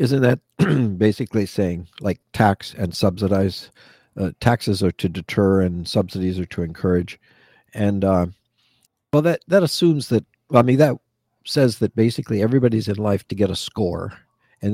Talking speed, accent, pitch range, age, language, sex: 160 wpm, American, 95-115 Hz, 50-69, English, male